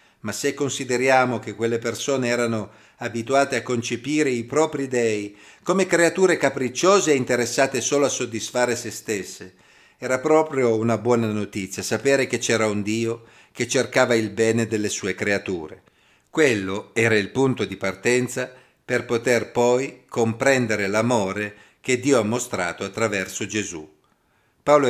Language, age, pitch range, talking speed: Italian, 50-69, 110-135 Hz, 140 wpm